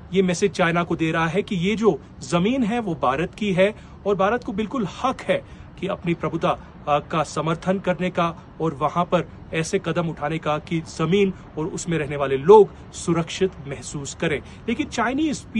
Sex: male